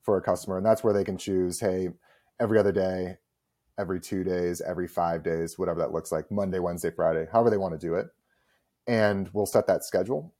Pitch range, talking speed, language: 85-100 Hz, 215 wpm, English